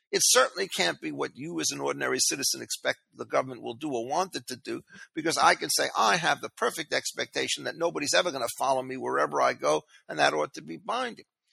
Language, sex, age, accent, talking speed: English, male, 50-69, American, 235 wpm